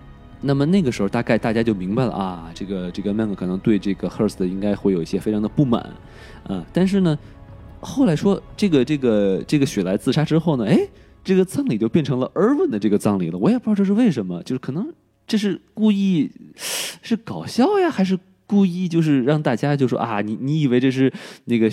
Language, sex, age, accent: Chinese, male, 20-39, native